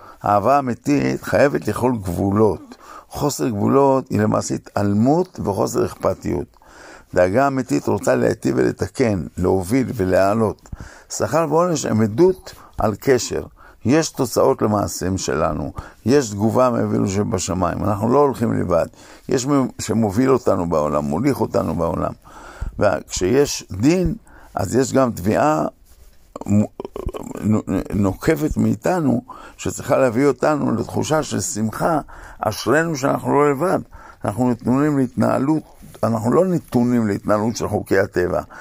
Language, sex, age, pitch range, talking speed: Hebrew, male, 50-69, 100-135 Hz, 115 wpm